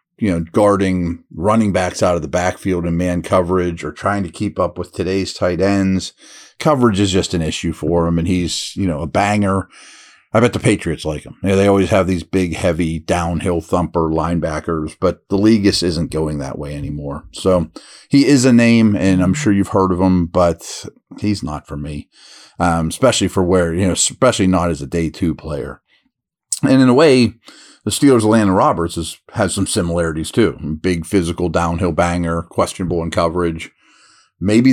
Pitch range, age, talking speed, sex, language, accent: 85-115 Hz, 40-59, 185 wpm, male, English, American